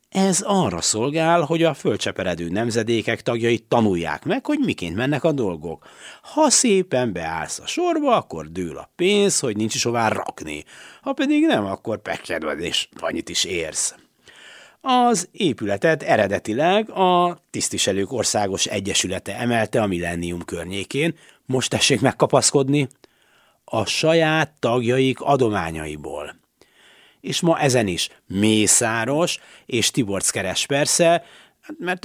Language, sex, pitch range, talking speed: Hungarian, male, 100-165 Hz, 120 wpm